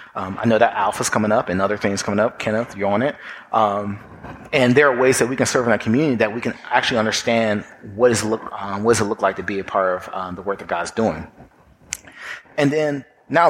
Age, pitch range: 30-49, 110-135 Hz